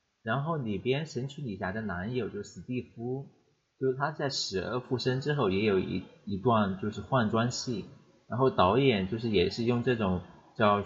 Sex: male